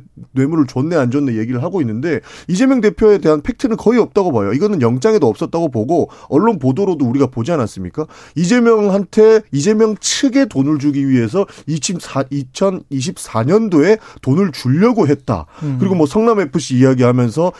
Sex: male